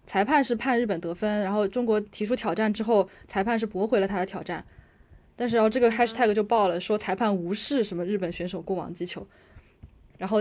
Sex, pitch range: female, 190-240 Hz